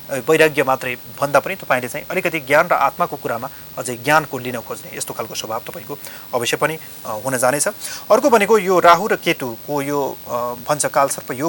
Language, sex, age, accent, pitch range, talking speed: English, male, 30-49, Indian, 125-155 Hz, 50 wpm